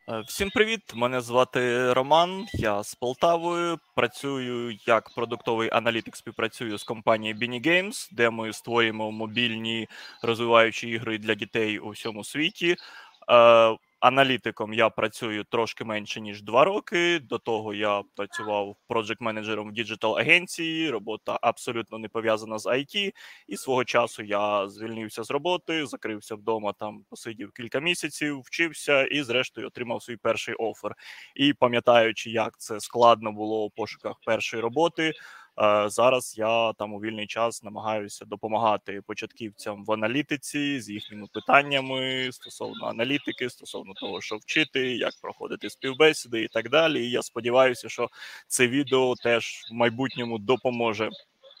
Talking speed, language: 135 wpm, Ukrainian